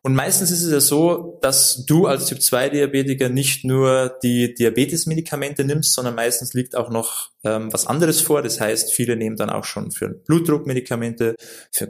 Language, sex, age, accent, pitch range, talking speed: German, male, 20-39, German, 125-155 Hz, 170 wpm